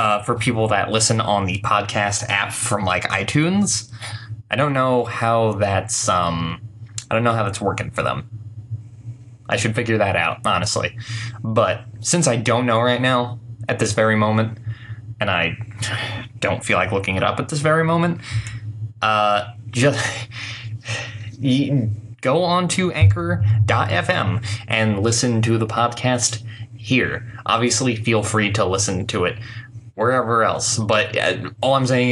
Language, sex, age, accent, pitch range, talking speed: English, male, 20-39, American, 110-120 Hz, 150 wpm